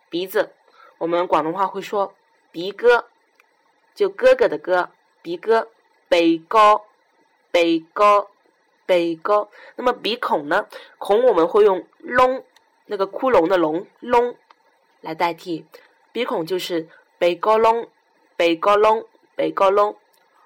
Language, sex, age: Chinese, female, 10-29